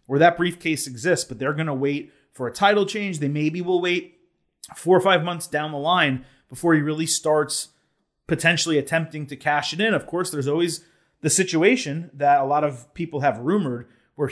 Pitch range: 130-165 Hz